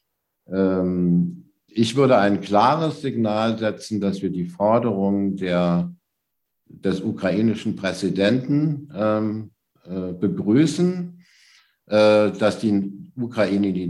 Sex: male